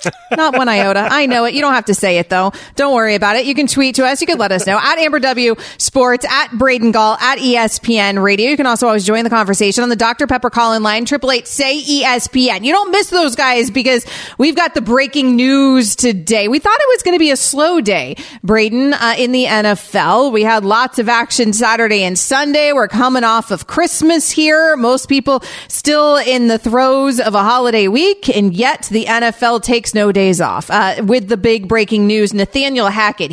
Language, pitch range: English, 205-260 Hz